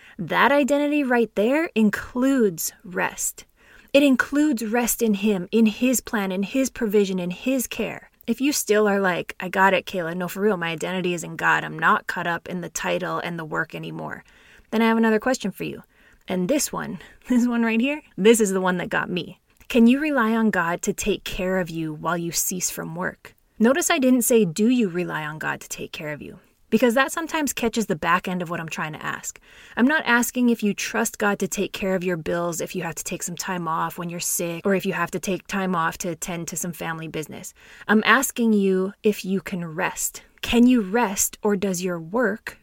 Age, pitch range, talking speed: 20-39, 180-235 Hz, 230 wpm